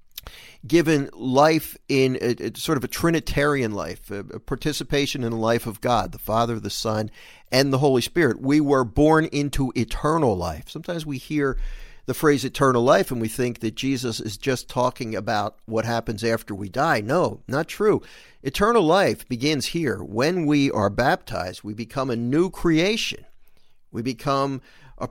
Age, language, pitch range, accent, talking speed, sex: 50-69, English, 115-155 Hz, American, 170 wpm, male